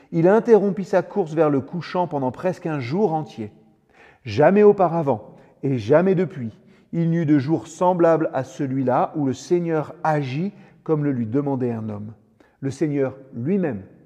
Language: French